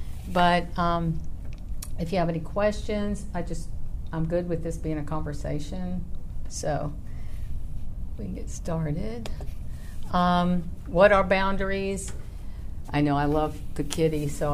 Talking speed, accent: 130 wpm, American